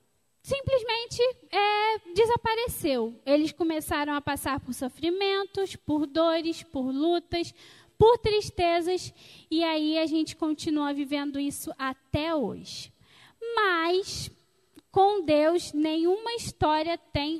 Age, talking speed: 10-29, 100 wpm